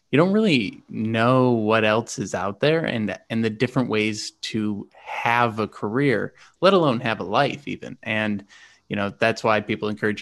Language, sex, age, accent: English, male, 20-39, American